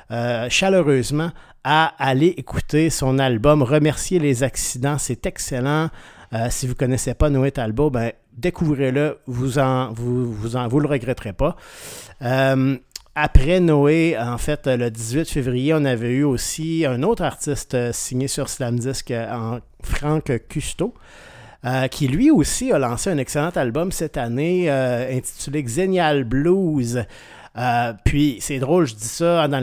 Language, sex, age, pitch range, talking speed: French, male, 50-69, 125-155 Hz, 150 wpm